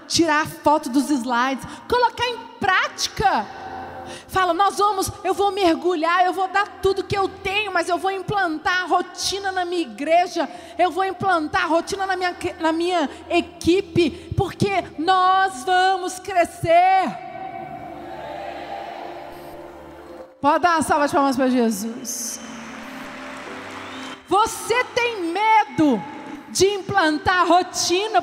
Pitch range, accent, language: 340-415 Hz, Brazilian, Portuguese